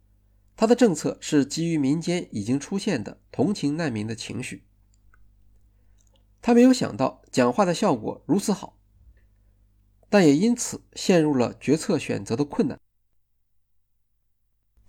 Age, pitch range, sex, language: 50-69, 100-160 Hz, male, Chinese